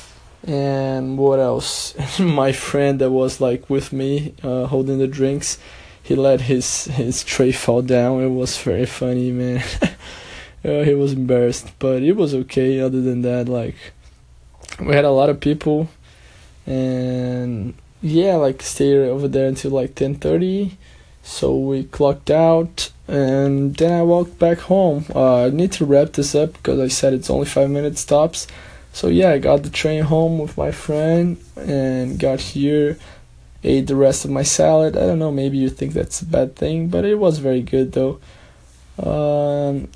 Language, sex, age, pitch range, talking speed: English, male, 20-39, 130-160 Hz, 175 wpm